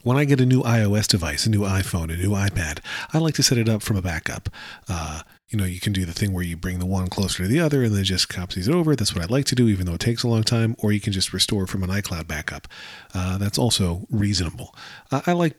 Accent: American